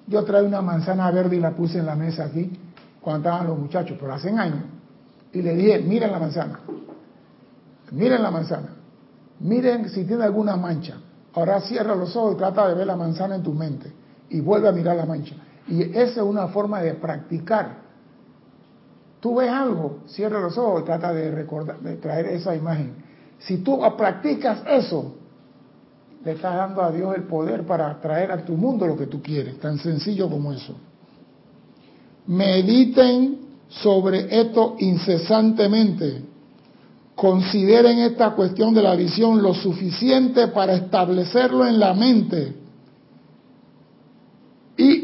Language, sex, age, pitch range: Spanish, male, 60-79, 165-220 Hz